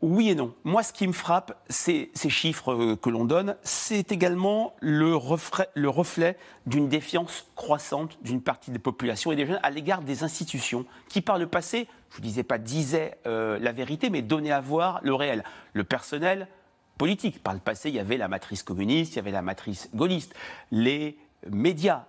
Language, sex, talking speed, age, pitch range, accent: French, male, 200 wpm, 40-59, 130-190 Hz, French